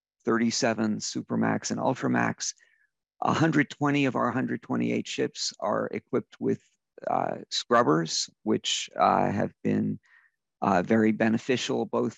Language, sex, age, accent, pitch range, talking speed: English, male, 50-69, American, 110-130 Hz, 110 wpm